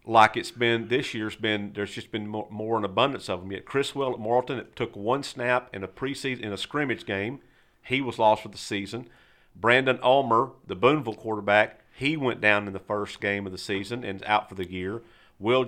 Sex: male